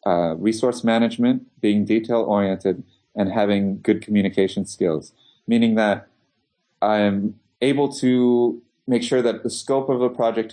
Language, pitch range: English, 95-115 Hz